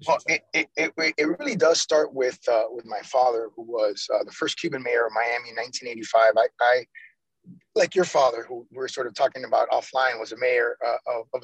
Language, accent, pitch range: English, American, 125-180 Hz